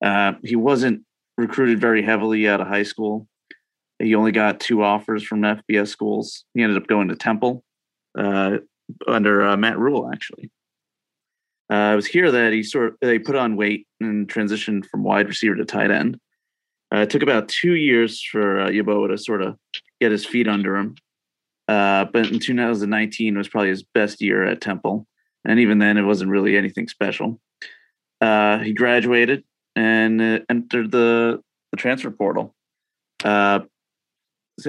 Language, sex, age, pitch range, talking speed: English, male, 30-49, 105-115 Hz, 170 wpm